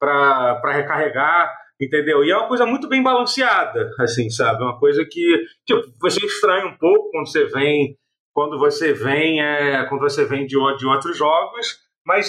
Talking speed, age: 170 wpm, 40-59